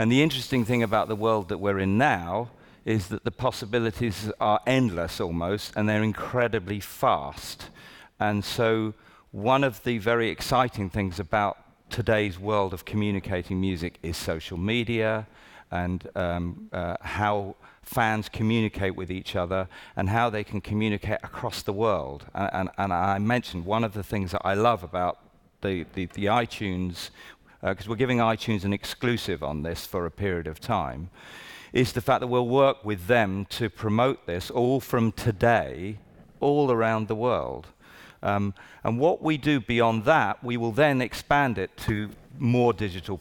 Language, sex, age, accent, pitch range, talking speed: English, male, 40-59, British, 95-120 Hz, 165 wpm